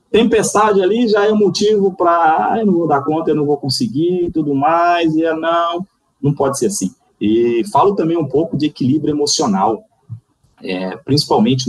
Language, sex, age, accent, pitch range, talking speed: Portuguese, male, 30-49, Brazilian, 125-185 Hz, 190 wpm